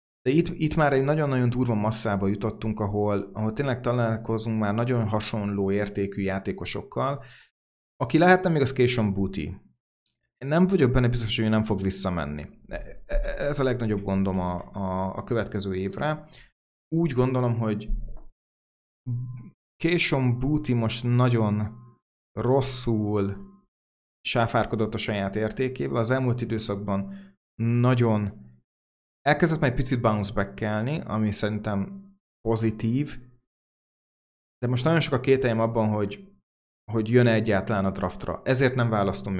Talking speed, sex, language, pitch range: 125 wpm, male, Hungarian, 100-125 Hz